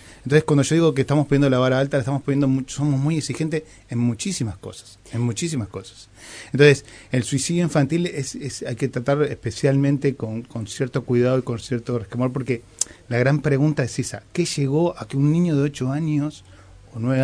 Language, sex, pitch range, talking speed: Spanish, male, 105-130 Hz, 200 wpm